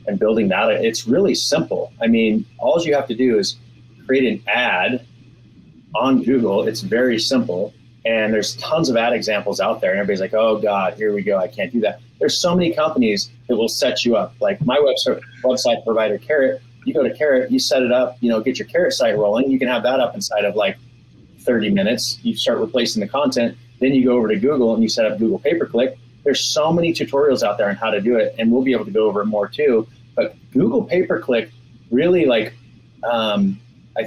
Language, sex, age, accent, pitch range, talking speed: English, male, 30-49, American, 110-130 Hz, 225 wpm